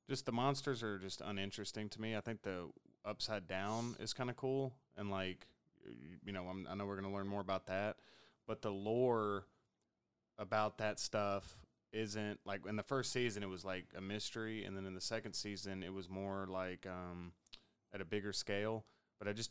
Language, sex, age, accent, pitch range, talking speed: English, male, 20-39, American, 95-110 Hz, 200 wpm